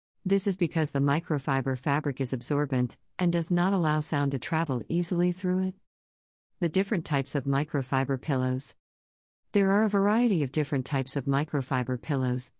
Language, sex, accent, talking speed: English, female, American, 160 wpm